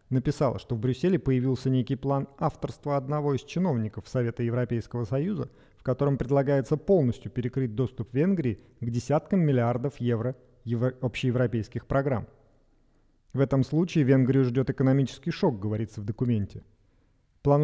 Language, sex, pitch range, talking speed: Russian, male, 115-140 Hz, 135 wpm